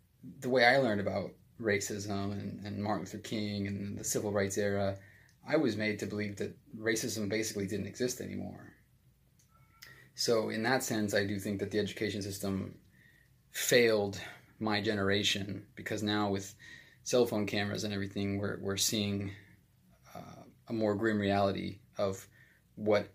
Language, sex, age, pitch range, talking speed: English, male, 20-39, 100-110 Hz, 155 wpm